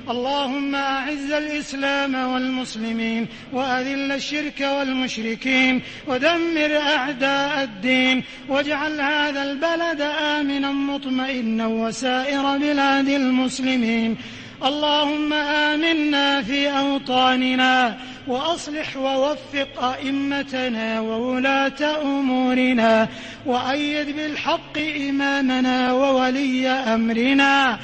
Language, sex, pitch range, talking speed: English, male, 255-290 Hz, 70 wpm